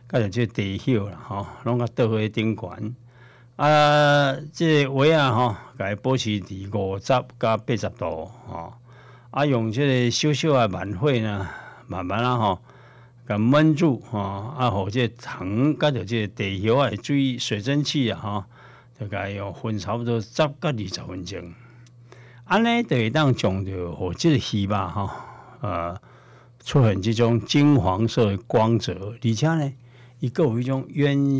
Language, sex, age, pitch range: Chinese, male, 60-79, 105-130 Hz